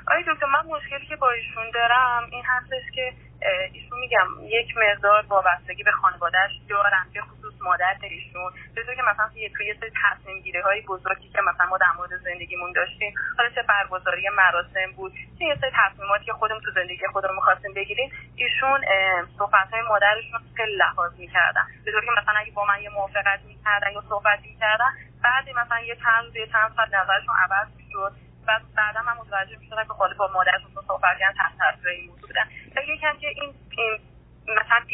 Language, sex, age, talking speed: Persian, female, 30-49, 170 wpm